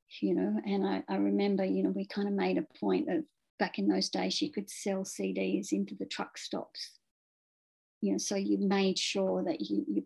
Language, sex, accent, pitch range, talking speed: English, female, Australian, 190-260 Hz, 215 wpm